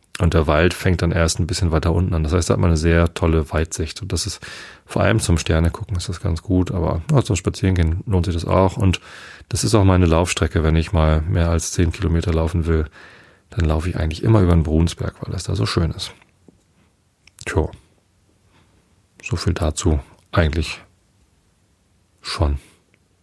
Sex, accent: male, German